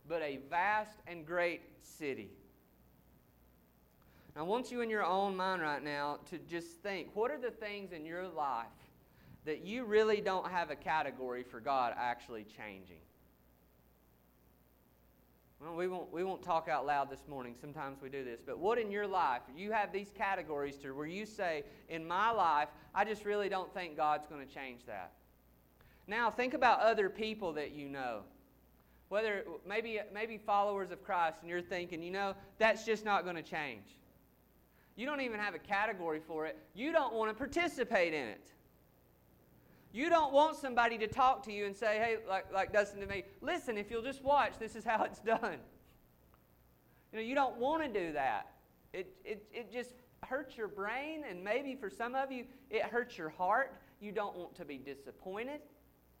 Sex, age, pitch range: male, 30-49, 145-220 Hz